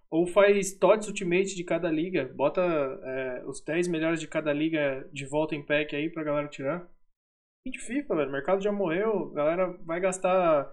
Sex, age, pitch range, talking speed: male, 20-39, 140-195 Hz, 195 wpm